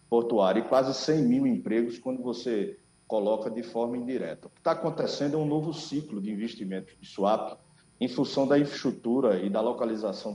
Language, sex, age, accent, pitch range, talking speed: Portuguese, male, 50-69, Brazilian, 105-145 Hz, 180 wpm